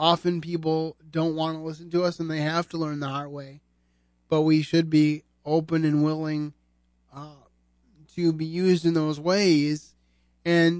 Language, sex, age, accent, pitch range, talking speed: English, male, 20-39, American, 135-170 Hz, 170 wpm